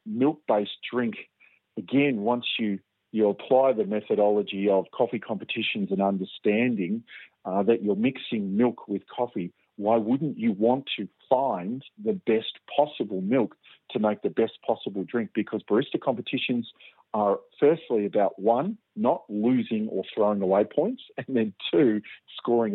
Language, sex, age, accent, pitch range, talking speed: English, male, 40-59, Australian, 100-130 Hz, 140 wpm